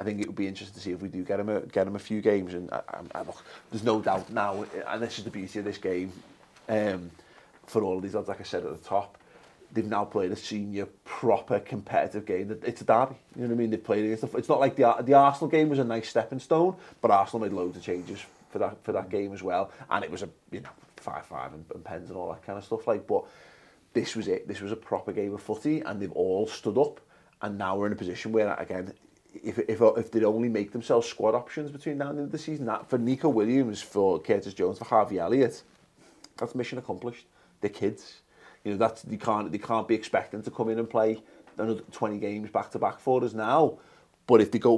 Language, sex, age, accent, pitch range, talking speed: English, male, 30-49, British, 100-125 Hz, 260 wpm